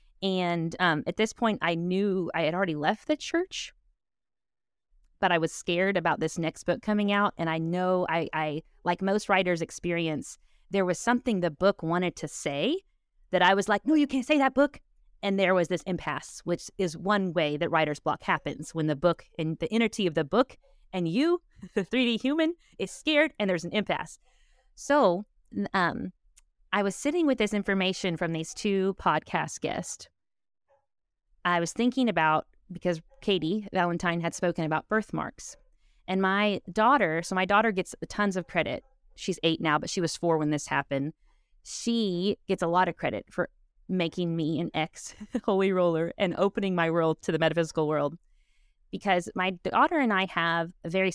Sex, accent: female, American